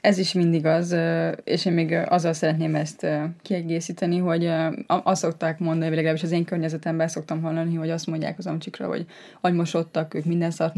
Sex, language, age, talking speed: female, Hungarian, 20-39, 175 wpm